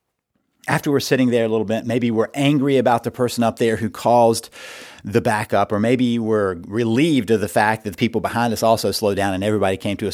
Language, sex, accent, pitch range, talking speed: English, male, American, 105-135 Hz, 230 wpm